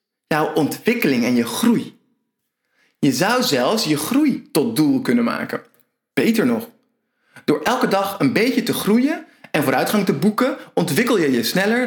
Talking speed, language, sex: 155 wpm, Dutch, male